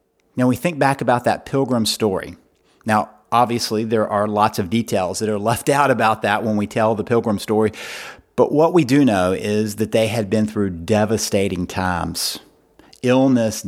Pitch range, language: 105-130 Hz, English